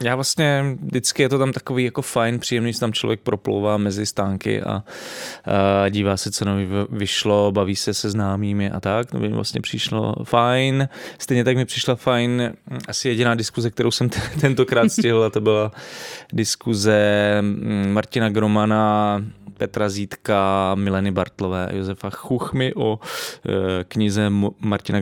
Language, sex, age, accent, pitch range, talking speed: Czech, male, 20-39, native, 100-125 Hz, 140 wpm